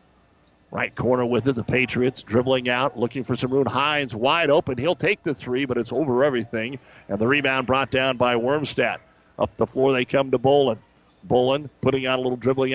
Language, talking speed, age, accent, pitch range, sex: English, 200 wpm, 50-69, American, 125-140 Hz, male